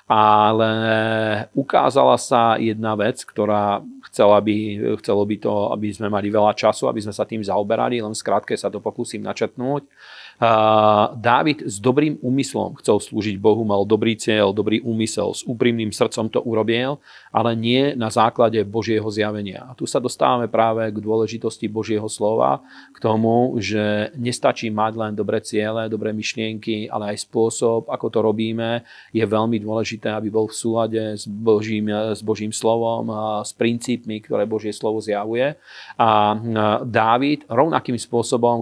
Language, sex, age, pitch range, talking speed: Slovak, male, 40-59, 105-115 Hz, 150 wpm